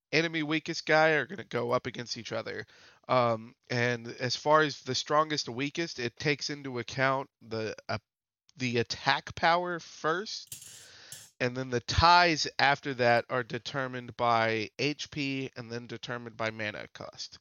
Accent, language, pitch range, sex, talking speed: American, English, 125-155 Hz, male, 160 wpm